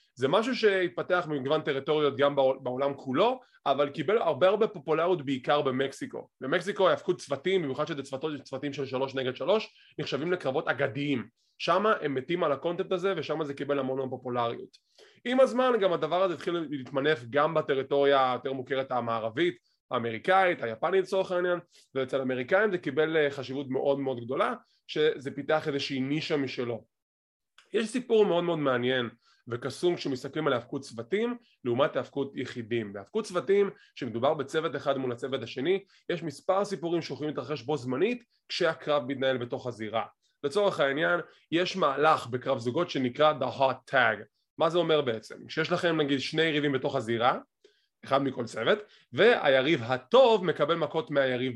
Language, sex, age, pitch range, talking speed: English, male, 20-39, 135-180 Hz, 150 wpm